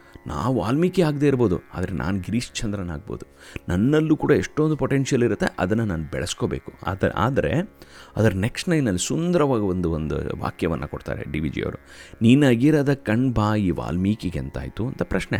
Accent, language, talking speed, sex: native, Kannada, 135 wpm, male